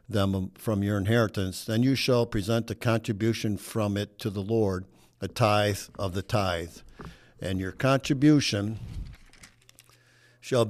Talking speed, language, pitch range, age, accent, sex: 135 wpm, English, 100-115 Hz, 60-79, American, male